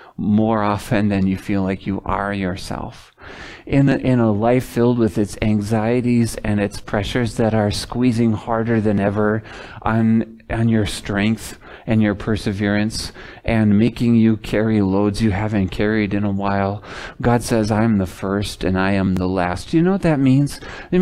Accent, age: American, 40-59